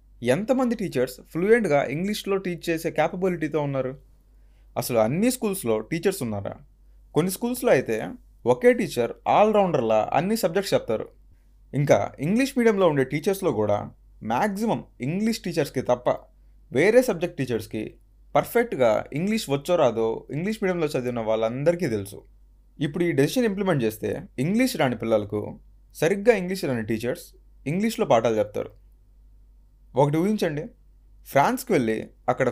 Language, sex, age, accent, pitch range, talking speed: Telugu, male, 20-39, native, 115-195 Hz, 120 wpm